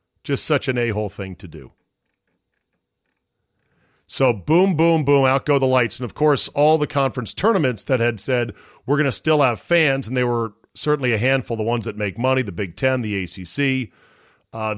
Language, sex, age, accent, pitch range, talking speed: English, male, 40-59, American, 105-140 Hz, 195 wpm